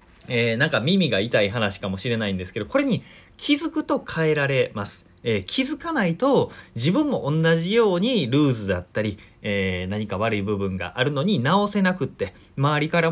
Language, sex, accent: Japanese, male, native